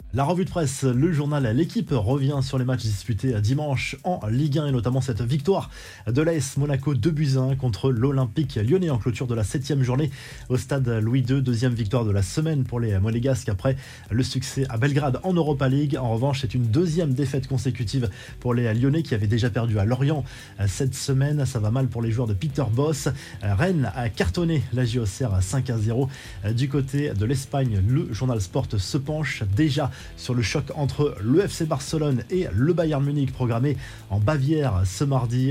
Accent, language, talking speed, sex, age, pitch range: French, French, 195 wpm, male, 20-39, 120-145 Hz